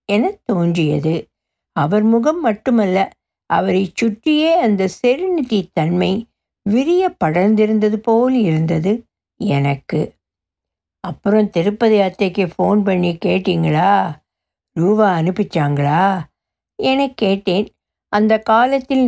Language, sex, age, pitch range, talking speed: Tamil, female, 60-79, 175-230 Hz, 85 wpm